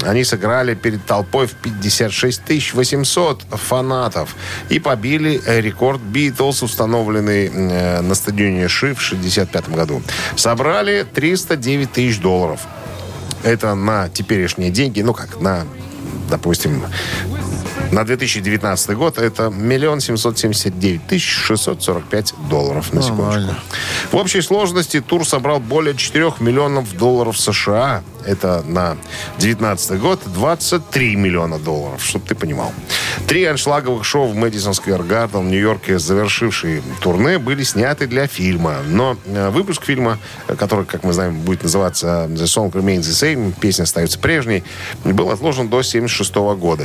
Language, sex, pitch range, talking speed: Russian, male, 95-130 Hz, 130 wpm